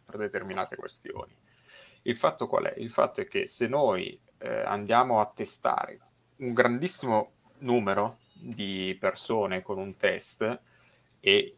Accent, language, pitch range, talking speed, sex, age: native, Italian, 95-120 Hz, 135 wpm, male, 30-49